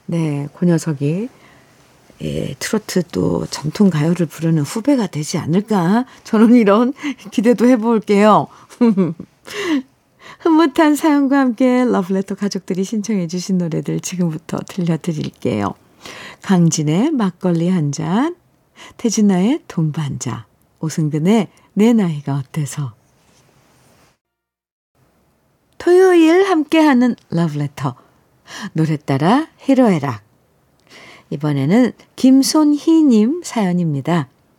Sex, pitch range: female, 160-240 Hz